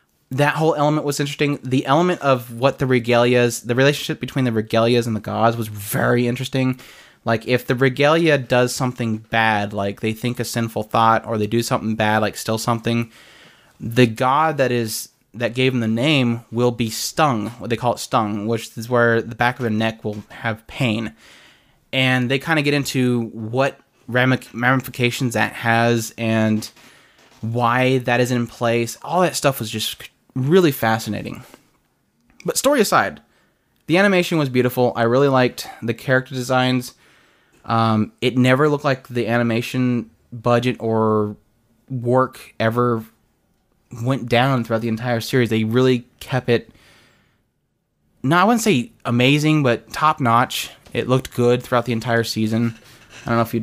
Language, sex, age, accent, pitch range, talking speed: English, male, 20-39, American, 115-130 Hz, 165 wpm